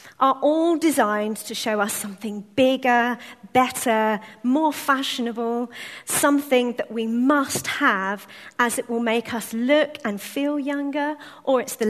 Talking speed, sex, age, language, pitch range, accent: 140 wpm, female, 40-59, English, 215-260 Hz, British